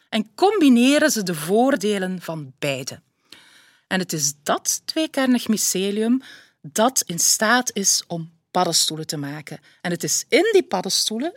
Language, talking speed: Dutch, 145 wpm